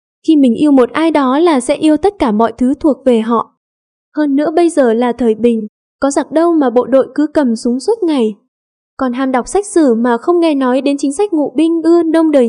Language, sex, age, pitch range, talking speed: Vietnamese, female, 10-29, 245-320 Hz, 245 wpm